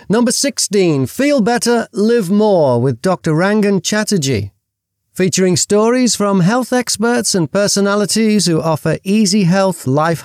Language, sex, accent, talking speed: English, male, British, 130 wpm